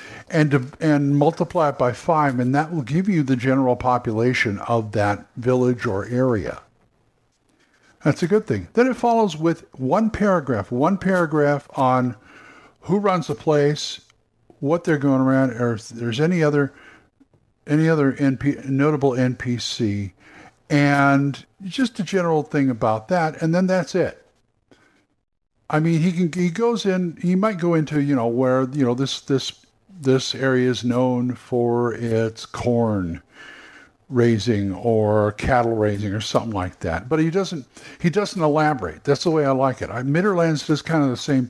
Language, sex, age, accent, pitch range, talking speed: English, male, 50-69, American, 120-155 Hz, 160 wpm